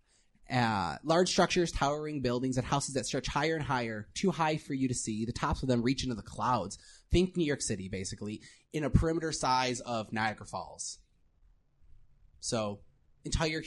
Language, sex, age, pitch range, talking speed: English, male, 20-39, 105-140 Hz, 175 wpm